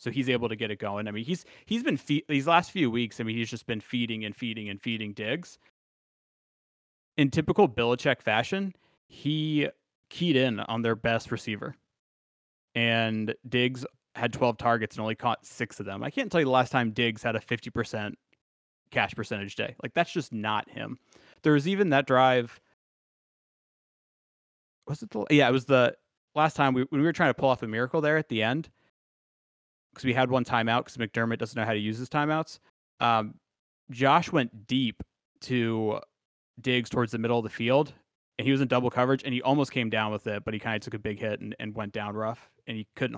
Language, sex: English, male